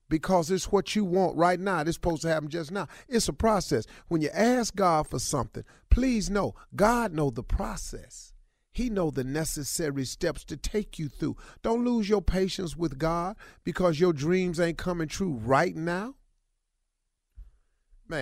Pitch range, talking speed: 105-170 Hz, 170 wpm